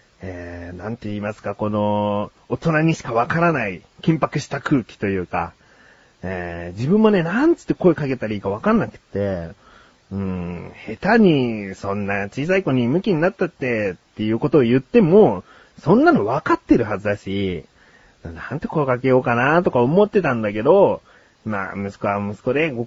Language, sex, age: Japanese, male, 30-49